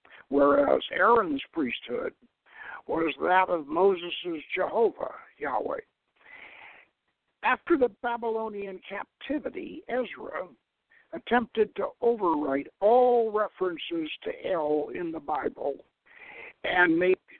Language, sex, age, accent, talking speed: English, male, 60-79, American, 90 wpm